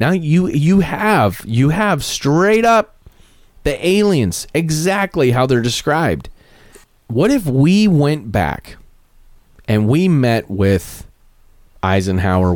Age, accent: 30-49, American